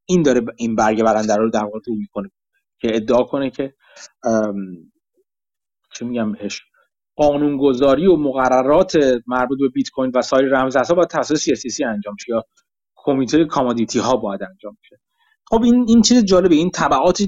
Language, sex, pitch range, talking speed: Persian, male, 115-160 Hz, 155 wpm